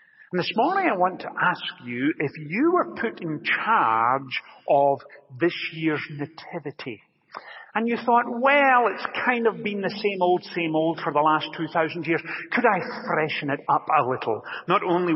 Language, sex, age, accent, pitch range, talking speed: English, male, 50-69, British, 145-205 Hz, 180 wpm